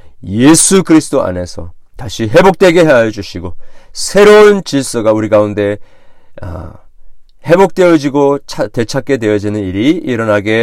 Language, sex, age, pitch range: Korean, male, 40-59, 110-160 Hz